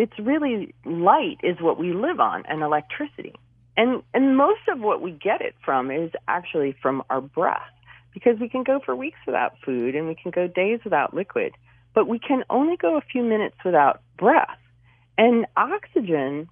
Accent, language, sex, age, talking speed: American, English, female, 40-59, 185 wpm